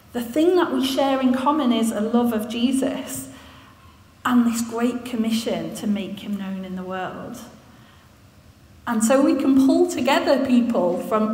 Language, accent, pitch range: English, British, 220-280 Hz